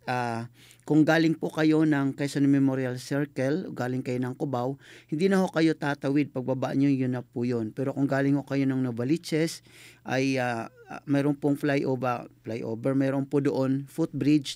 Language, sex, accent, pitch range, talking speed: Filipino, male, native, 130-155 Hz, 165 wpm